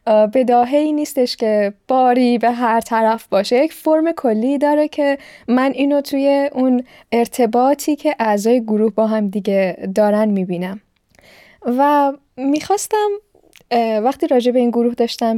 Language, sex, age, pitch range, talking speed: Persian, female, 10-29, 210-265 Hz, 135 wpm